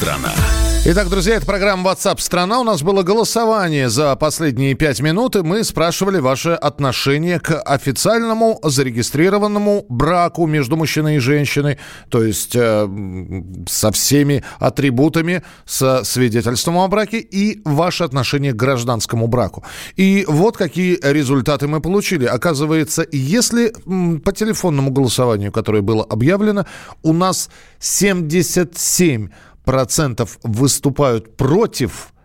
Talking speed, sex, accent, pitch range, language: 115 wpm, male, native, 120-175 Hz, Russian